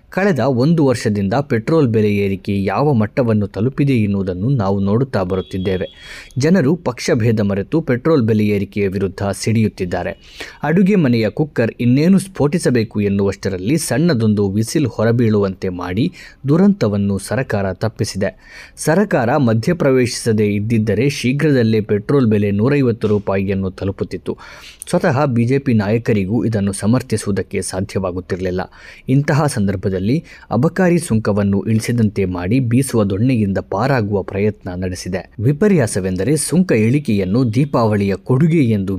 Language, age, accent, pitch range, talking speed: Kannada, 20-39, native, 100-130 Hz, 100 wpm